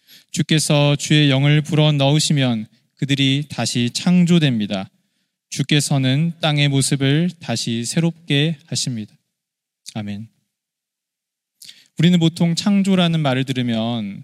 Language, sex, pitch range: Korean, male, 130-175 Hz